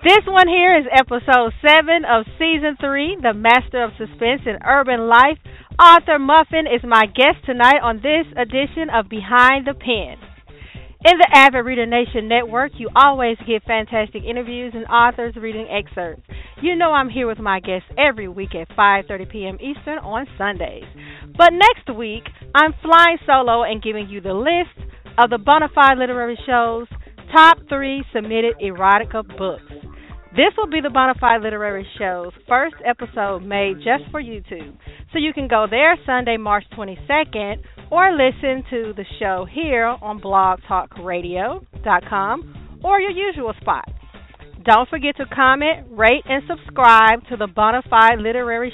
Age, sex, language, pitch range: 40-59, female, English, 220-290 Hz